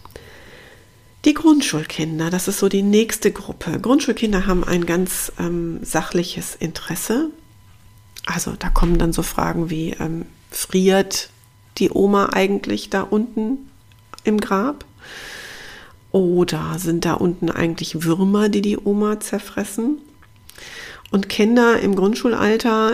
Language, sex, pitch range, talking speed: German, female, 170-210 Hz, 120 wpm